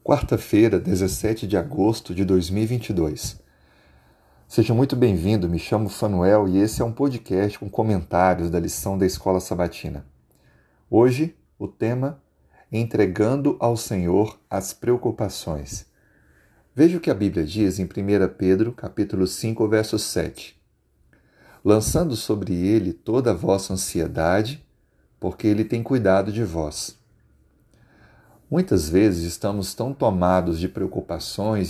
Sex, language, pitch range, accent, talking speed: male, Portuguese, 95-115 Hz, Brazilian, 125 wpm